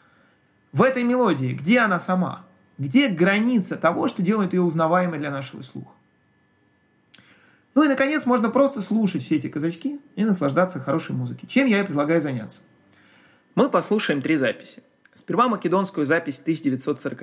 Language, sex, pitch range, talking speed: Russian, male, 130-195 Hz, 145 wpm